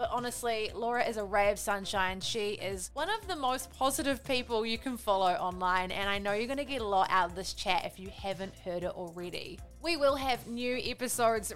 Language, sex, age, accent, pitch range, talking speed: English, female, 20-39, Australian, 200-255 Hz, 230 wpm